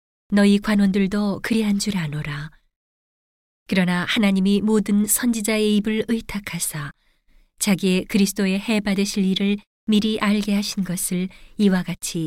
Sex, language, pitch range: female, Korean, 180-210 Hz